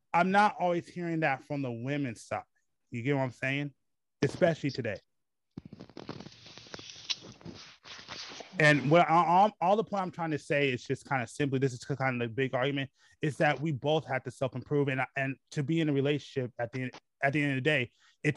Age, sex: 20-39, male